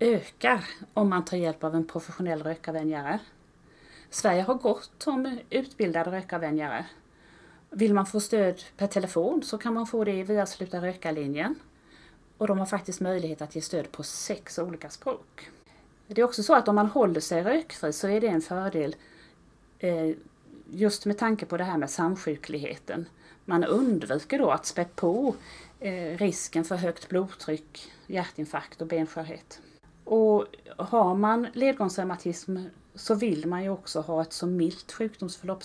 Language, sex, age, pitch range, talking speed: Swedish, female, 30-49, 165-210 Hz, 155 wpm